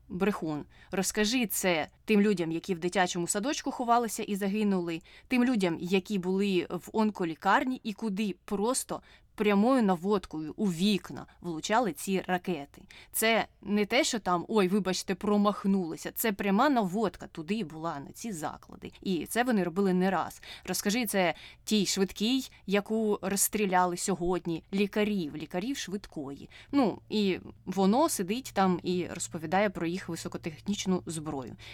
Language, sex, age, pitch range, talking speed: Ukrainian, female, 20-39, 175-225 Hz, 135 wpm